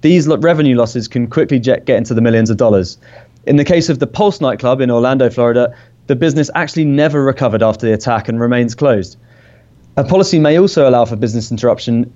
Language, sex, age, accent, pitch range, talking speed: English, male, 20-39, British, 120-145 Hz, 195 wpm